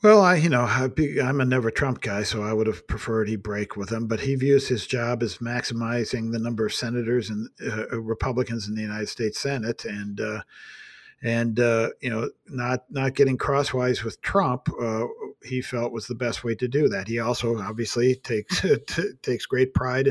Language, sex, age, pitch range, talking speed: English, male, 50-69, 110-130 Hz, 200 wpm